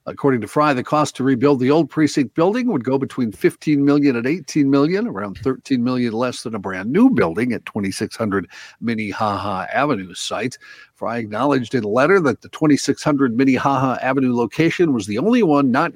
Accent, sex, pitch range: American, male, 115-150 Hz